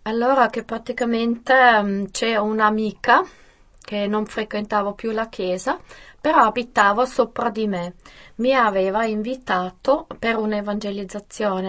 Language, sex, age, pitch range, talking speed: Italian, female, 20-39, 195-235 Hz, 115 wpm